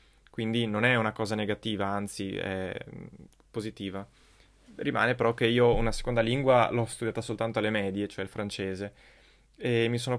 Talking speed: 160 wpm